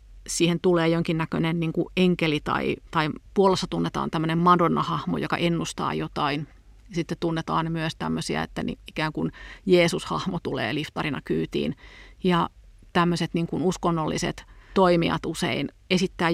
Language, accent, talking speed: Finnish, native, 130 wpm